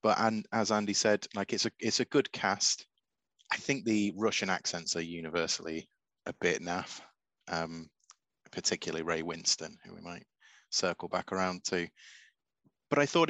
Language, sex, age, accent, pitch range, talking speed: English, male, 30-49, British, 90-110 Hz, 160 wpm